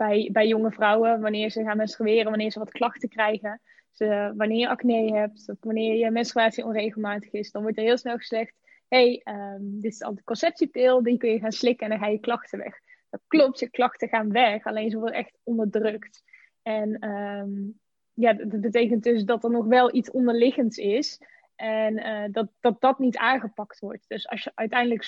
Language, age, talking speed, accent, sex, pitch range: Dutch, 20-39, 205 wpm, Dutch, female, 215-240 Hz